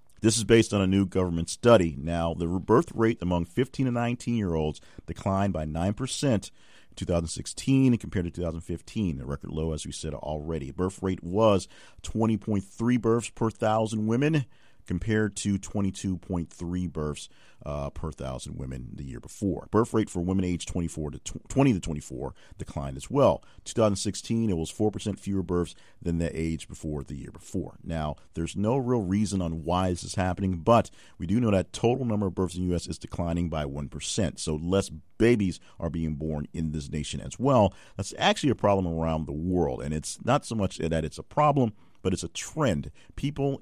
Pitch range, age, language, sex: 80-100 Hz, 40-59, English, male